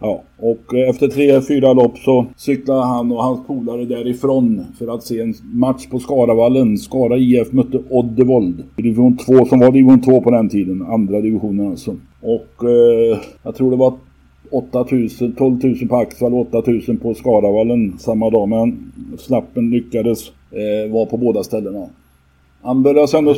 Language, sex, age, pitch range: Swedish, male, 50-69, 110-125 Hz